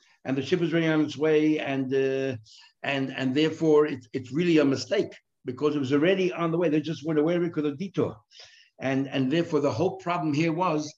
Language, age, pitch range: English, 60-79, 125-160 Hz